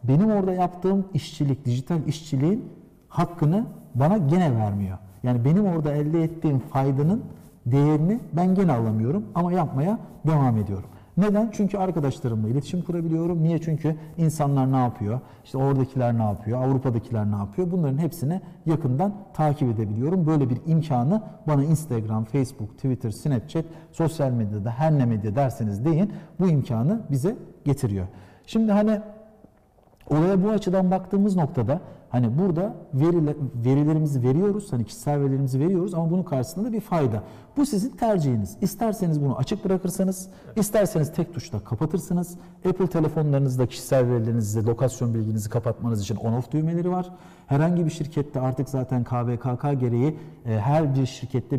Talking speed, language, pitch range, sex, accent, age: 135 wpm, Turkish, 125-175 Hz, male, native, 50-69